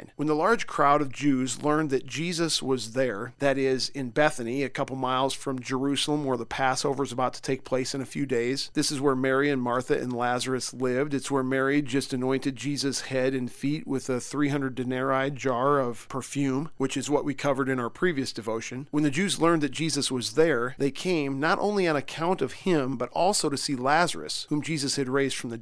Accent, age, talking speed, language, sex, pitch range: American, 40-59, 220 wpm, English, male, 130-145 Hz